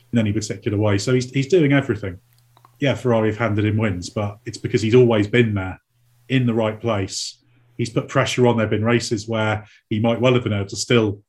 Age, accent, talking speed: 30-49, British, 225 wpm